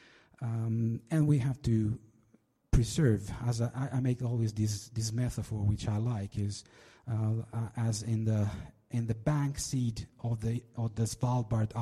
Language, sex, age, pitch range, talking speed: Italian, male, 50-69, 105-125 Hz, 160 wpm